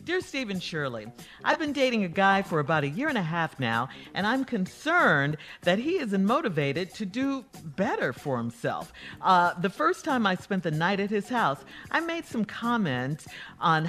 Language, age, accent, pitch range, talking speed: English, 50-69, American, 150-225 Hz, 190 wpm